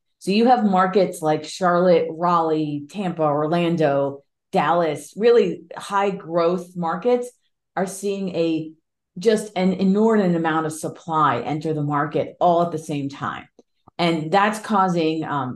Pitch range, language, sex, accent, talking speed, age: 155-195 Hz, English, female, American, 135 wpm, 30-49